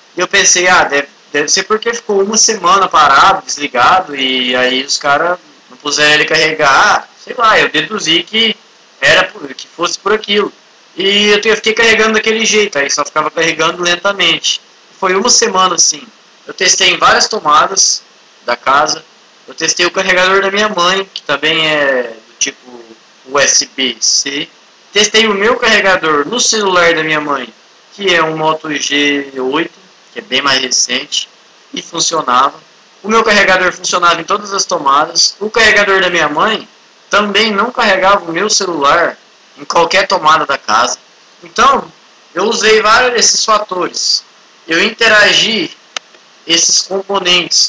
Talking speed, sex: 155 wpm, male